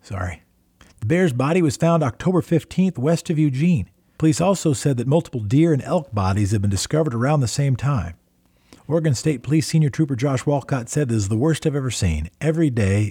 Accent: American